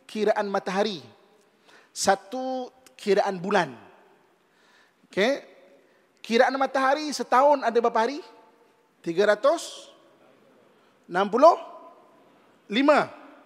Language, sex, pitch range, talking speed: Malay, male, 190-265 Hz, 70 wpm